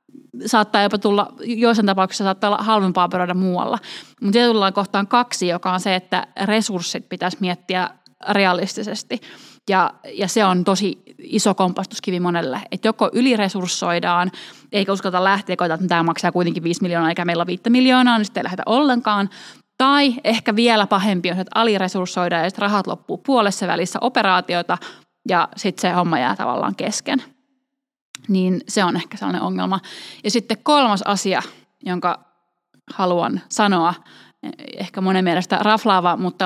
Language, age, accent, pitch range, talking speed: Finnish, 20-39, native, 180-220 Hz, 150 wpm